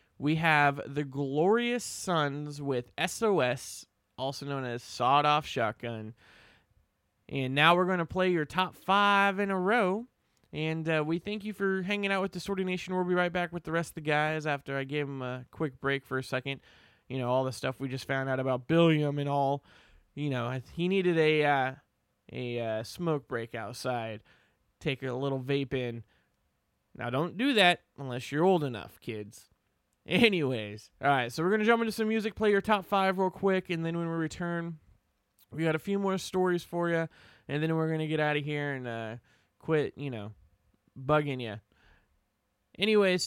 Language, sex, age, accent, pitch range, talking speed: English, male, 20-39, American, 130-180 Hz, 195 wpm